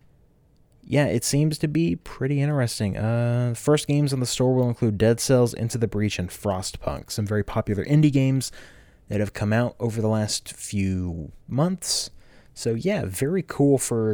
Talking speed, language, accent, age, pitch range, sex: 180 wpm, English, American, 20-39, 100-125 Hz, male